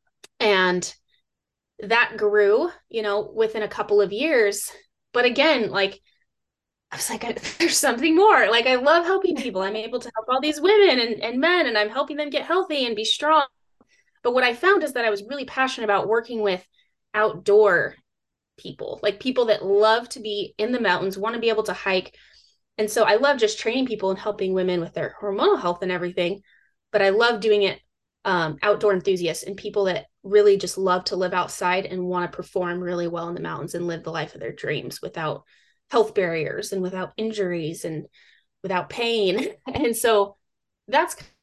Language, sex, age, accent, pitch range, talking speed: English, female, 20-39, American, 190-250 Hz, 195 wpm